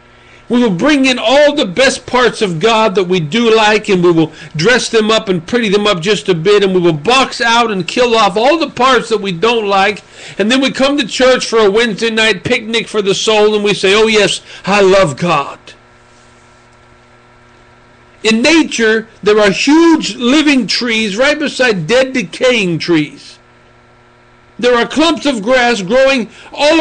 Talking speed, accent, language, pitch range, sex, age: 185 wpm, American, English, 180-255 Hz, male, 50-69